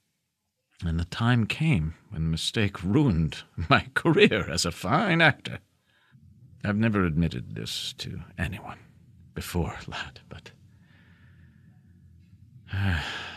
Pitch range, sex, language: 90-140 Hz, male, English